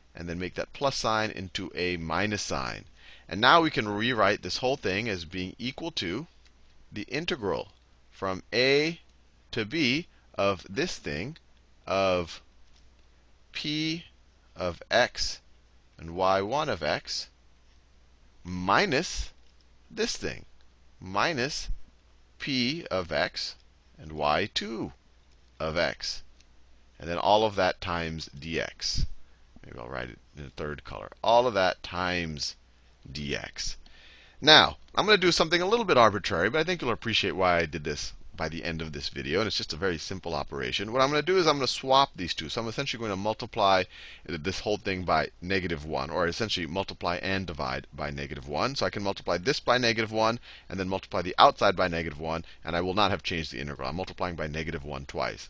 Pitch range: 70-105 Hz